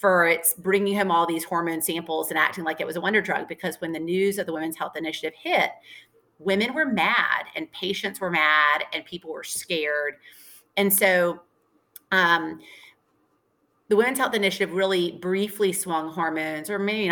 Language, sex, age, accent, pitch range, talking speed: English, female, 30-49, American, 160-200 Hz, 175 wpm